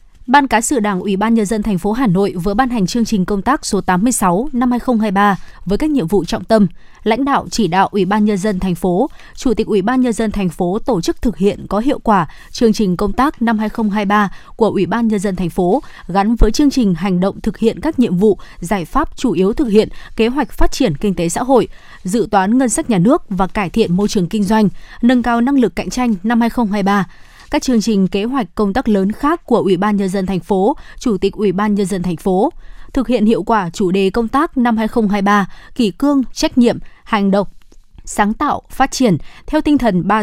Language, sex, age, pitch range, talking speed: Vietnamese, female, 20-39, 195-240 Hz, 235 wpm